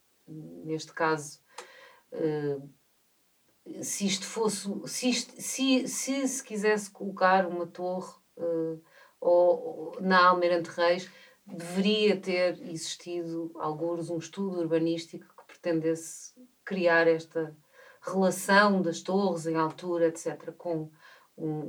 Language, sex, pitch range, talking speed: Portuguese, female, 165-205 Hz, 105 wpm